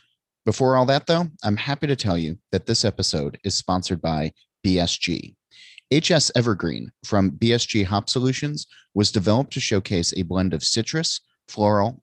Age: 30-49